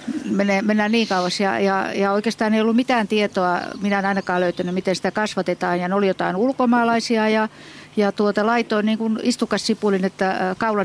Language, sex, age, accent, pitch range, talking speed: Finnish, female, 50-69, native, 190-225 Hz, 175 wpm